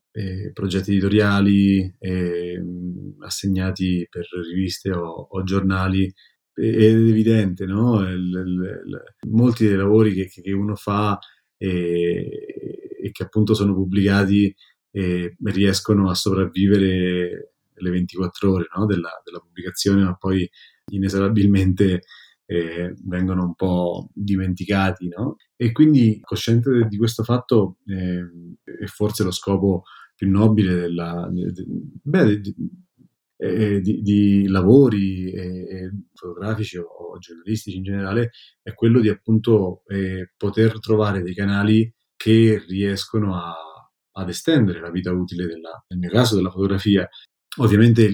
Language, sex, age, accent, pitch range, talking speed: Italian, male, 30-49, native, 90-105 Hz, 130 wpm